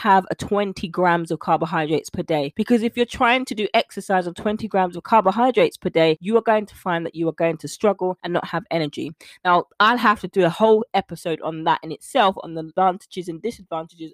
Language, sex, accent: English, female, British